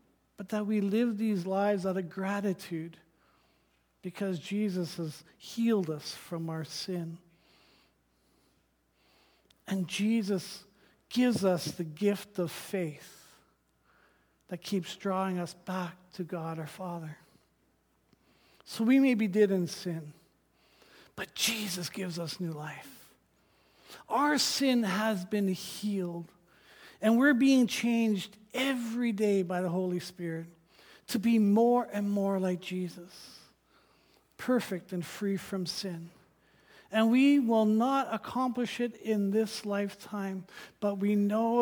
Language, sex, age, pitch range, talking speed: English, male, 50-69, 175-215 Hz, 125 wpm